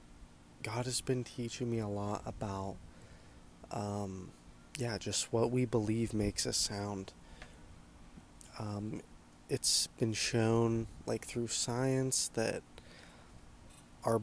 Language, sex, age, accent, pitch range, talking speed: English, male, 20-39, American, 75-115 Hz, 110 wpm